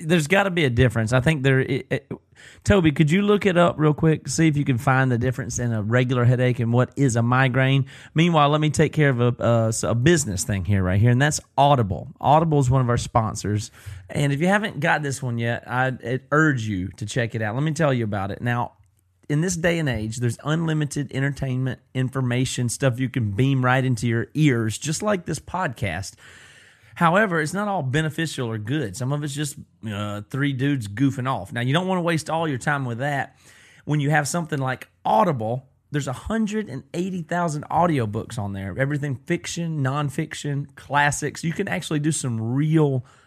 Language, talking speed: English, 205 wpm